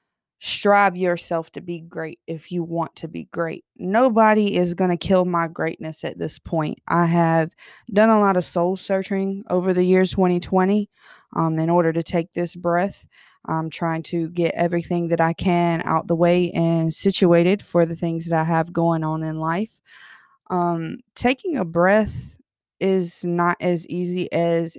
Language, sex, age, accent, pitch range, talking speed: English, female, 20-39, American, 165-195 Hz, 175 wpm